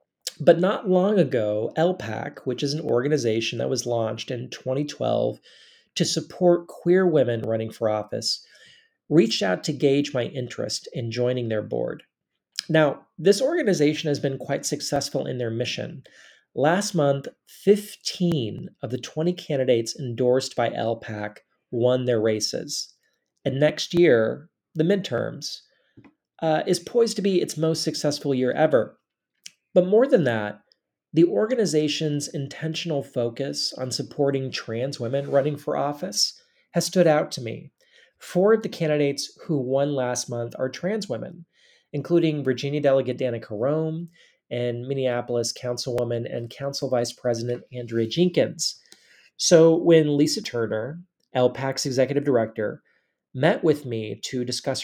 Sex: male